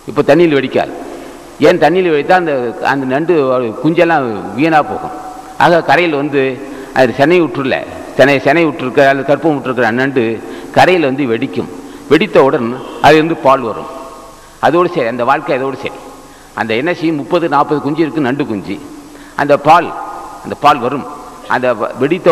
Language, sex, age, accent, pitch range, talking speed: Tamil, male, 50-69, native, 135-155 Hz, 150 wpm